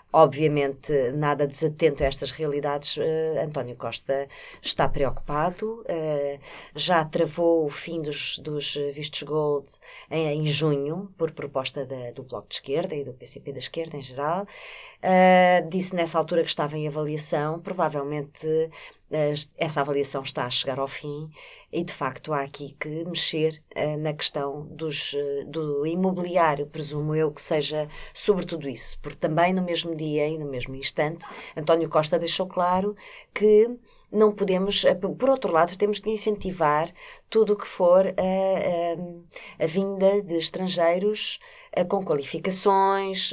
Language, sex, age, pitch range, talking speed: Portuguese, female, 20-39, 145-175 Hz, 140 wpm